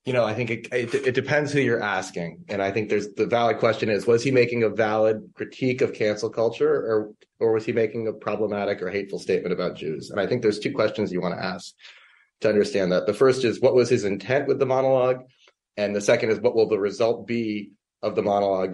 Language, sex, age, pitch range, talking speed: English, male, 30-49, 100-135 Hz, 240 wpm